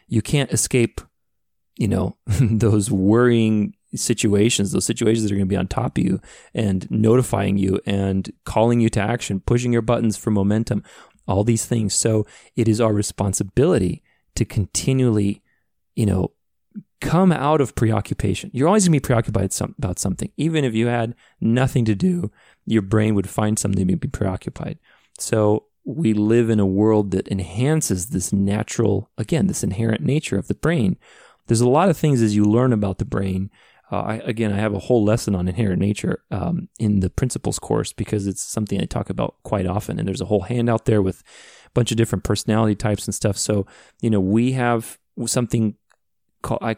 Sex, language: male, English